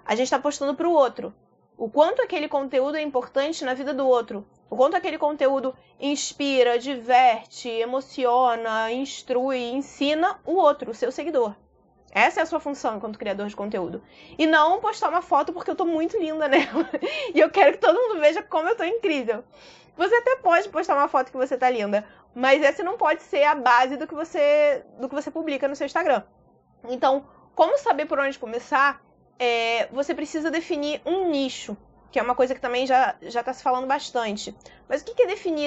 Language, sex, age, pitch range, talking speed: Portuguese, female, 20-39, 255-320 Hz, 200 wpm